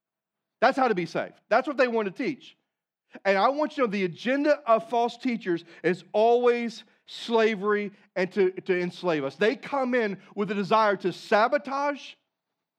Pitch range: 185-240 Hz